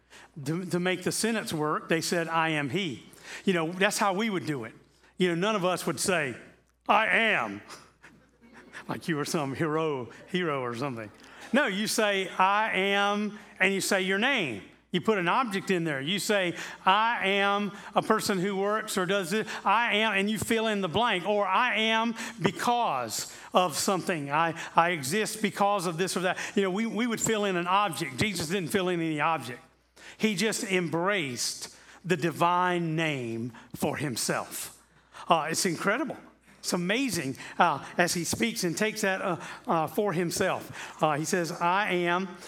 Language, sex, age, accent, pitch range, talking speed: English, male, 40-59, American, 165-205 Hz, 180 wpm